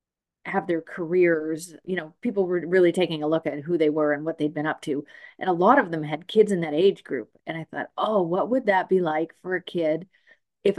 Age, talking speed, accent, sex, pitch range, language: 30-49, 250 wpm, American, female, 165-220 Hz, English